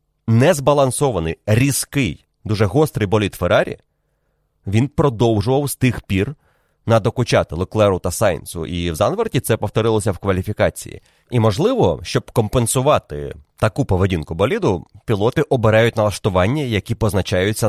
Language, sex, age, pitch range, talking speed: Ukrainian, male, 30-49, 95-125 Hz, 115 wpm